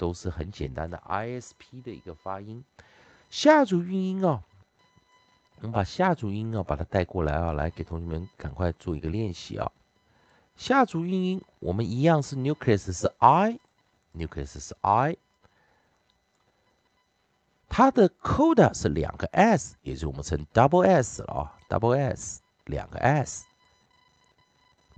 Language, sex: Chinese, male